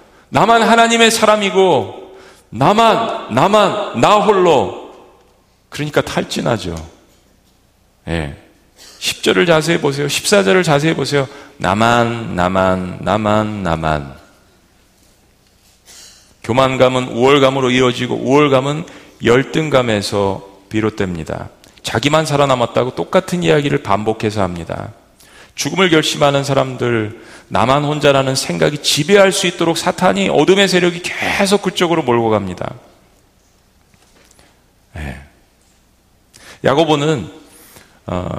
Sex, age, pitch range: male, 40-59, 105-160 Hz